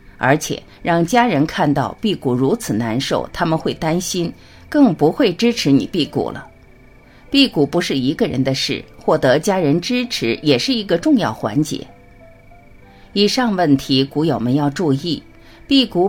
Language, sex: Chinese, female